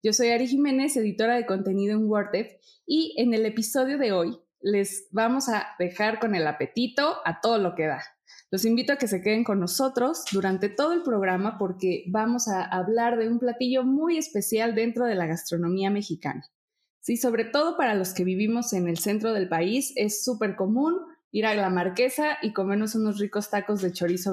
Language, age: Spanish, 20-39